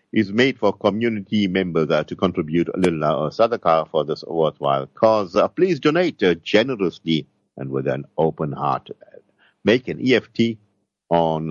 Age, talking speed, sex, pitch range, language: 50-69, 160 wpm, male, 75-95 Hz, English